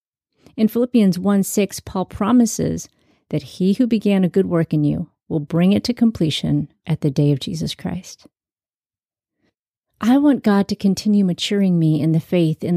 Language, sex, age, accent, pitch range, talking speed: English, female, 40-59, American, 165-210 Hz, 175 wpm